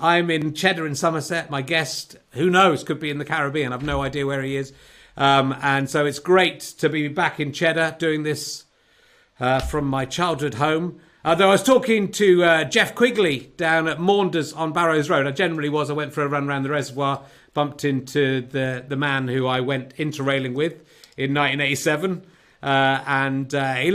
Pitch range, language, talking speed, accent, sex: 130-160 Hz, English, 195 wpm, British, male